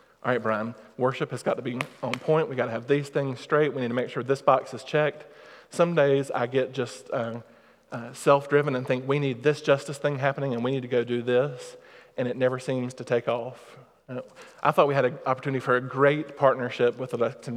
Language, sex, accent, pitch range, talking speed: English, male, American, 120-140 Hz, 235 wpm